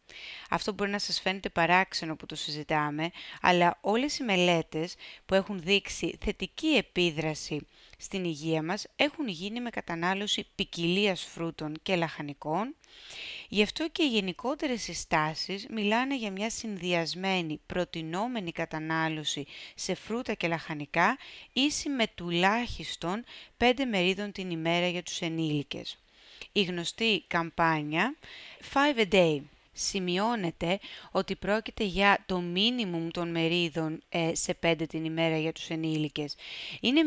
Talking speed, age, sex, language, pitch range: 125 wpm, 30-49, female, Greek, 165-210 Hz